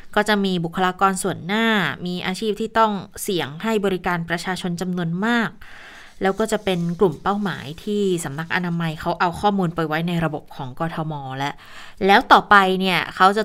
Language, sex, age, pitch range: Thai, female, 20-39, 170-220 Hz